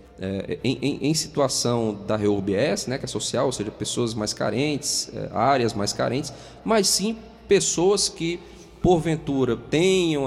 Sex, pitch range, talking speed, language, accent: male, 115-170 Hz, 145 wpm, Portuguese, Brazilian